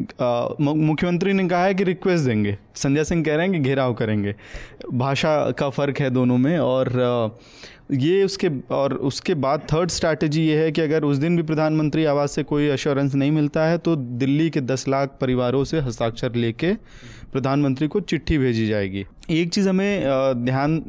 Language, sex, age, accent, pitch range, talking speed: Hindi, male, 20-39, native, 125-155 Hz, 180 wpm